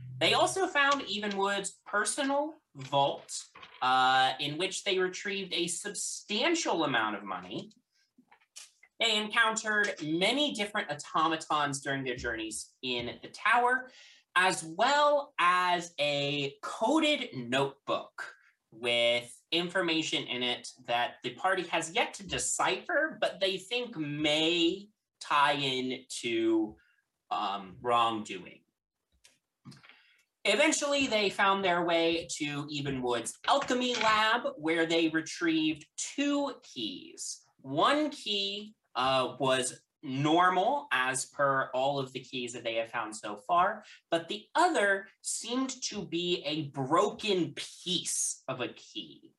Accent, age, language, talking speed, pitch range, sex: American, 30-49, English, 115 wpm, 135-215 Hz, male